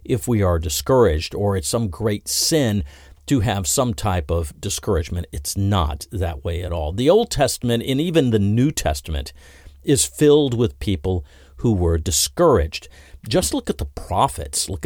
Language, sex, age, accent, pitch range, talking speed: English, male, 50-69, American, 85-110 Hz, 170 wpm